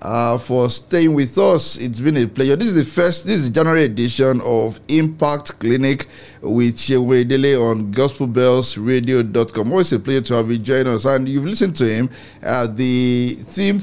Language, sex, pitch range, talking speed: English, male, 115-140 Hz, 180 wpm